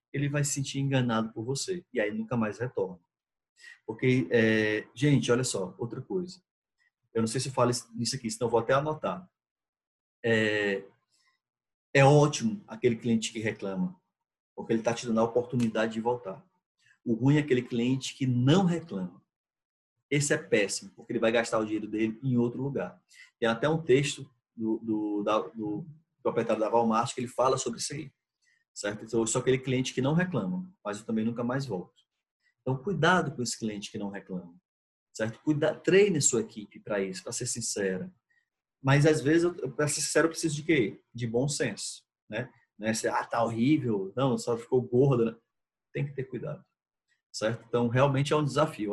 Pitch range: 115-150 Hz